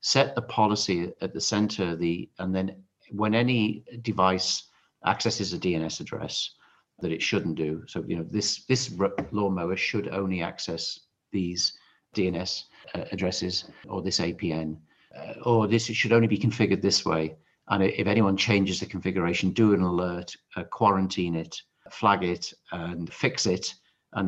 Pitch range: 85-105 Hz